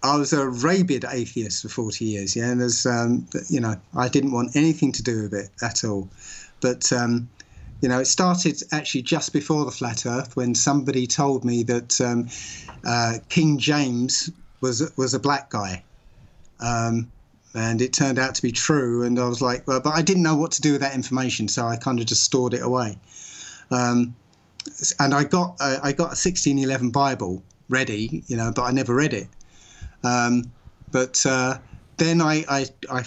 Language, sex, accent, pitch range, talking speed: English, male, British, 120-150 Hz, 190 wpm